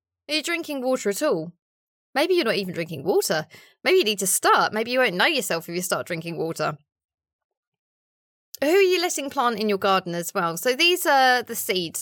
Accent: British